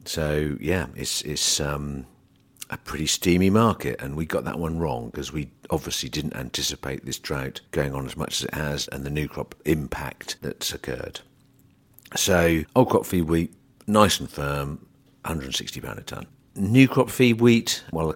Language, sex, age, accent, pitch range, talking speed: English, male, 50-69, British, 70-90 Hz, 170 wpm